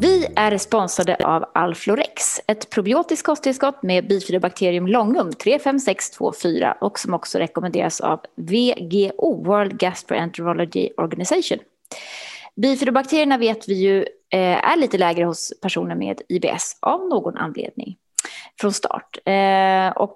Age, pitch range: 20-39, 185-245 Hz